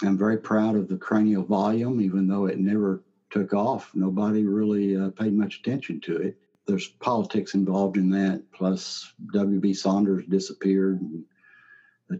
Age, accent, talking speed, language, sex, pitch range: 60-79, American, 155 wpm, English, male, 95-105 Hz